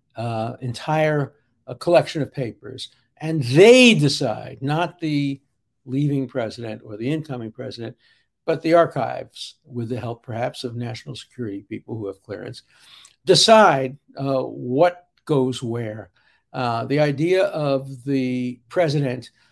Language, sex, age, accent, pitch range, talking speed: English, male, 60-79, American, 125-160 Hz, 125 wpm